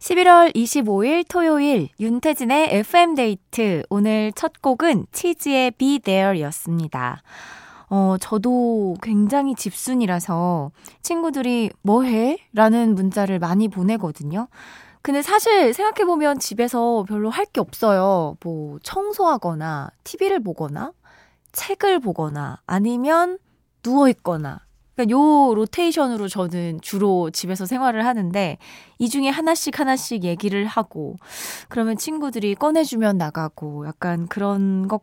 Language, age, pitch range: Korean, 20-39, 185-280 Hz